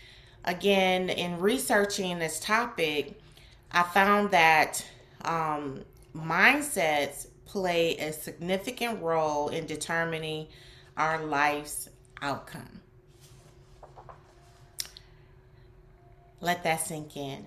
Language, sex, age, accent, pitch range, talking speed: English, female, 30-49, American, 140-190 Hz, 80 wpm